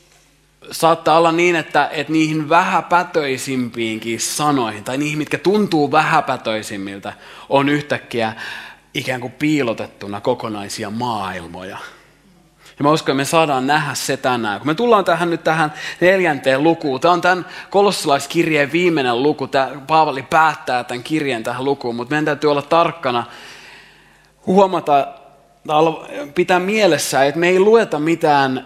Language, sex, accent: Finnish, male, native